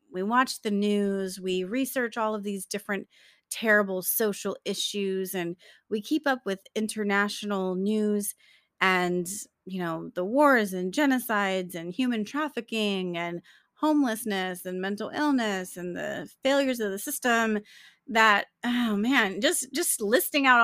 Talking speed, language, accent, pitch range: 140 wpm, English, American, 185-230 Hz